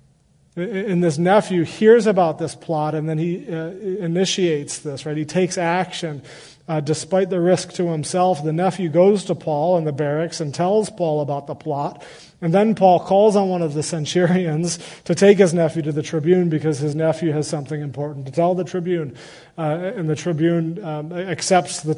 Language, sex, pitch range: English, male, 160-185 Hz